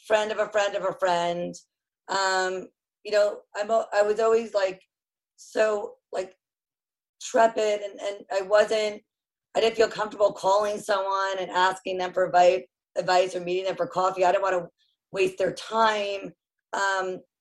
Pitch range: 180-215 Hz